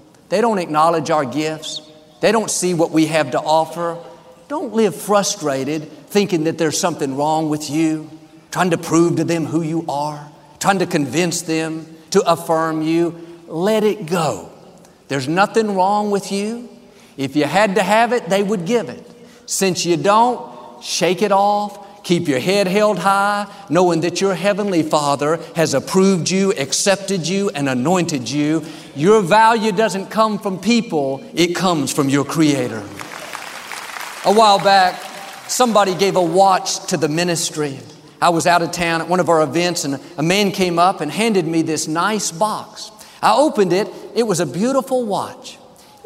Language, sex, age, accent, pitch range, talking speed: English, male, 50-69, American, 160-200 Hz, 170 wpm